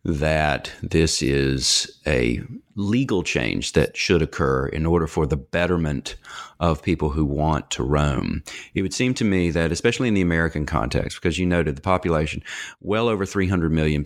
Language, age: English, 40-59